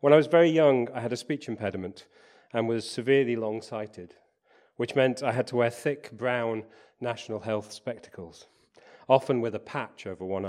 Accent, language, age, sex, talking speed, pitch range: British, English, 40-59, male, 175 wpm, 110-140 Hz